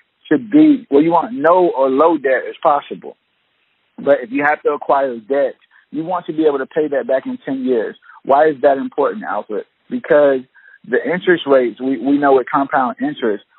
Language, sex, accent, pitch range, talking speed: English, male, American, 130-175 Hz, 205 wpm